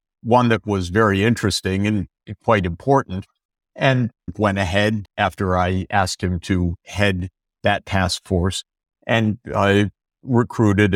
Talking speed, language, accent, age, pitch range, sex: 125 wpm, English, American, 60-79, 95-115 Hz, male